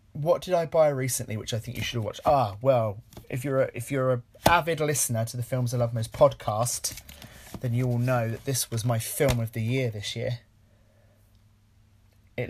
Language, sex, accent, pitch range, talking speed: English, male, British, 110-135 Hz, 205 wpm